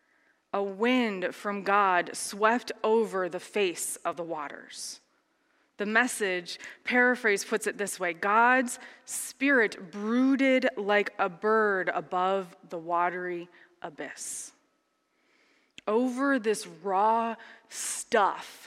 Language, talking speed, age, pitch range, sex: English, 105 wpm, 20-39, 205-260 Hz, female